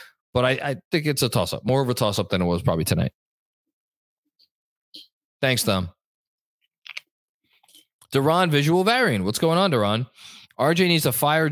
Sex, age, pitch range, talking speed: male, 20-39, 95-130 Hz, 150 wpm